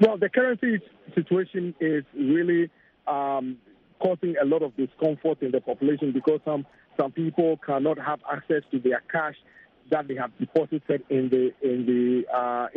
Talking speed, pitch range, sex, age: 160 wpm, 140-170 Hz, male, 50-69